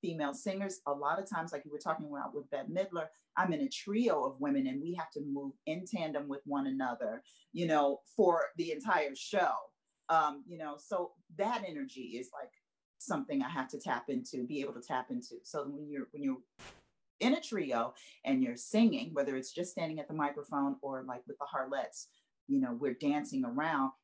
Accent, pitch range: American, 155-215 Hz